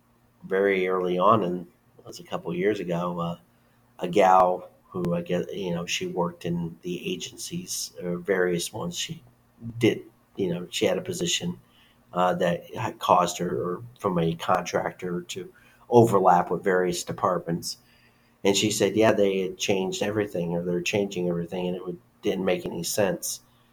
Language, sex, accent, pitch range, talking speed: English, male, American, 85-115 Hz, 170 wpm